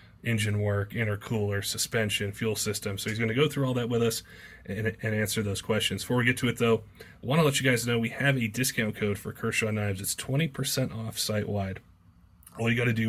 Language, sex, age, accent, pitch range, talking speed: English, male, 30-49, American, 105-120 Hz, 220 wpm